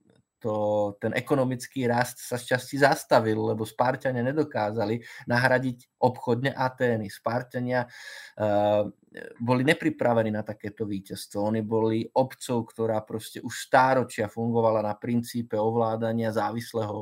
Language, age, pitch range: Slovak, 20-39, 110-130 Hz